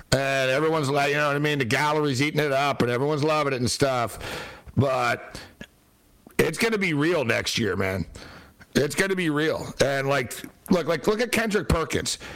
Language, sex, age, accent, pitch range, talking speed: English, male, 60-79, American, 130-170 Hz, 190 wpm